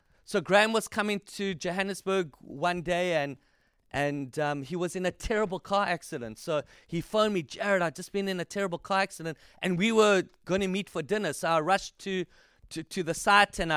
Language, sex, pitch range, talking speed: English, male, 170-195 Hz, 210 wpm